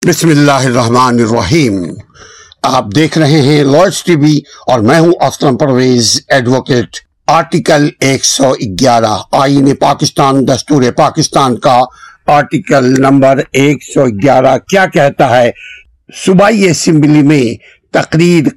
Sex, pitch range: male, 125-160 Hz